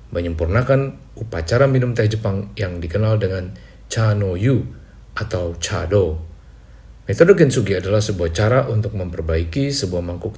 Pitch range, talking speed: 90-120 Hz, 120 wpm